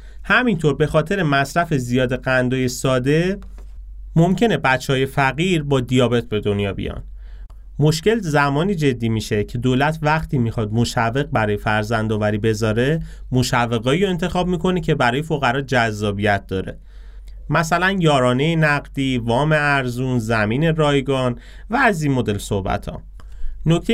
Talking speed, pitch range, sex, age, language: 125 wpm, 110-150 Hz, male, 30-49, Persian